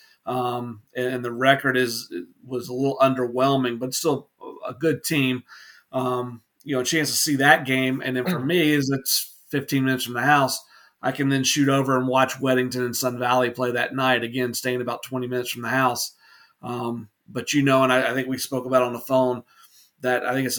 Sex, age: male, 30-49